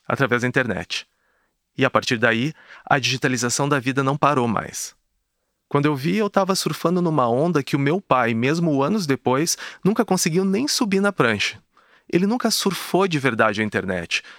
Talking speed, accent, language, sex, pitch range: 175 wpm, Brazilian, Portuguese, male, 125-160 Hz